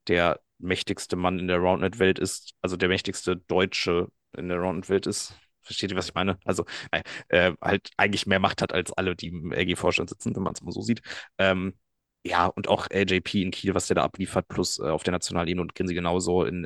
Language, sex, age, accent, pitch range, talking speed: German, male, 30-49, German, 90-100 Hz, 215 wpm